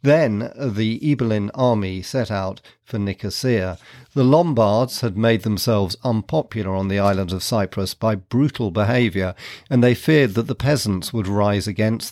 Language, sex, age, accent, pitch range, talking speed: English, male, 40-59, British, 100-130 Hz, 155 wpm